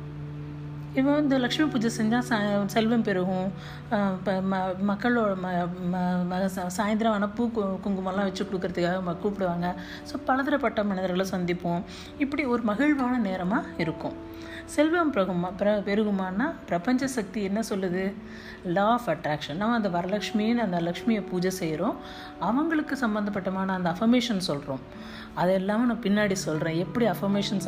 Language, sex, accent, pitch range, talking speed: Tamil, female, native, 180-235 Hz, 120 wpm